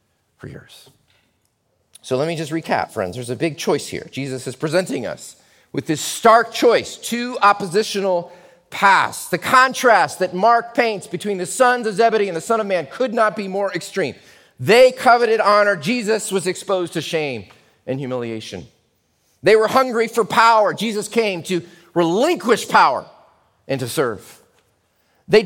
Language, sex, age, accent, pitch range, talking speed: English, male, 40-59, American, 165-230 Hz, 160 wpm